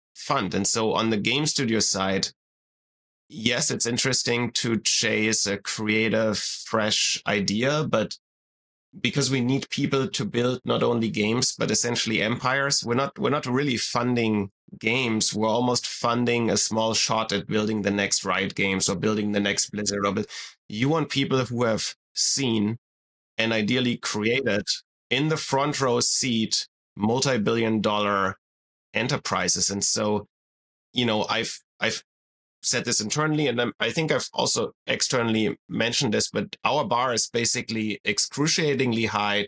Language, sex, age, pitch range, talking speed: English, male, 30-49, 105-120 Hz, 145 wpm